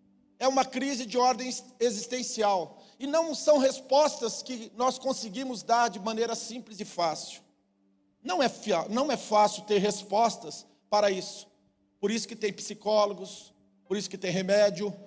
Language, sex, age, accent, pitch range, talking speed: Portuguese, male, 50-69, Brazilian, 205-265 Hz, 145 wpm